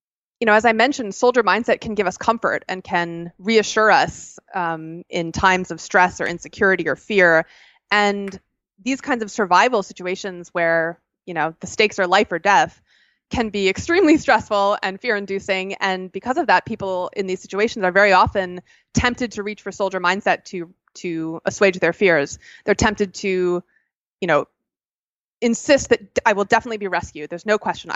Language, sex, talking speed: English, female, 180 wpm